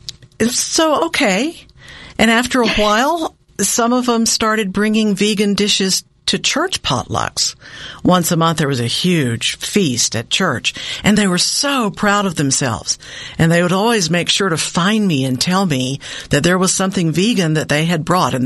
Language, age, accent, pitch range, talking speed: English, 60-79, American, 150-215 Hz, 180 wpm